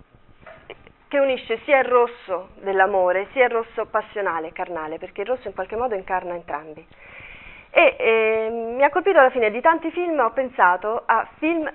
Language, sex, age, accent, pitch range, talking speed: Italian, female, 30-49, native, 190-255 Hz, 170 wpm